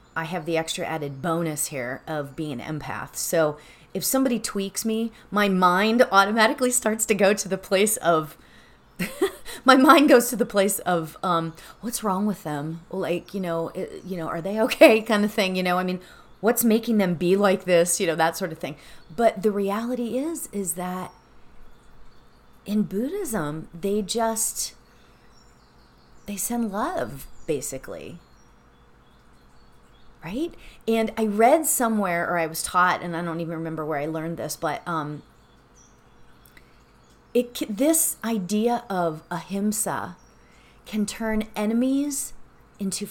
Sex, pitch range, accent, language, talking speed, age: female, 165-220 Hz, American, English, 150 wpm, 30-49